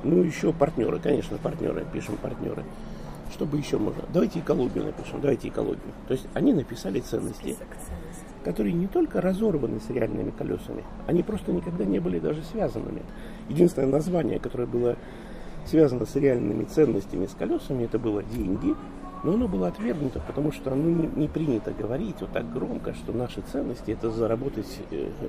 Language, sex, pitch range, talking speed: Russian, male, 115-160 Hz, 160 wpm